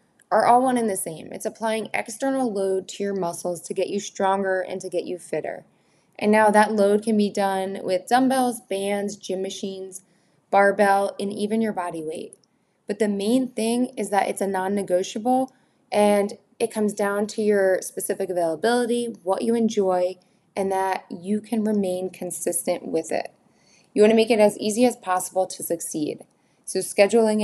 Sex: female